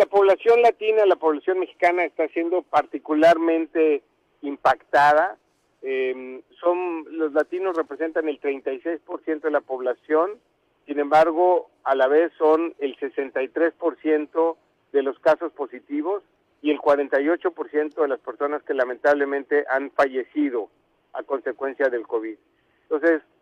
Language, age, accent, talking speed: Spanish, 50-69, Mexican, 120 wpm